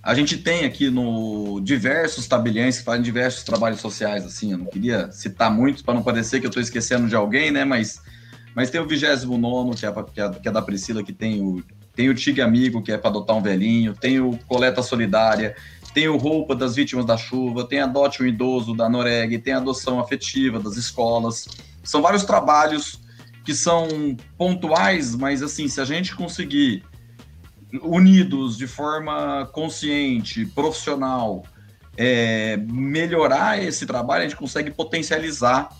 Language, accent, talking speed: Portuguese, Brazilian, 175 wpm